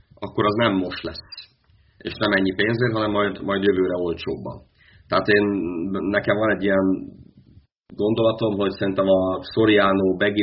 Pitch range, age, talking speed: 90-105 Hz, 30-49, 150 wpm